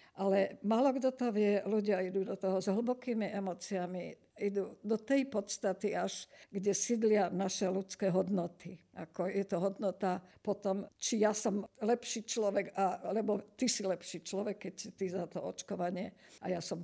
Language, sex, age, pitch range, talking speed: Slovak, female, 50-69, 185-210 Hz, 165 wpm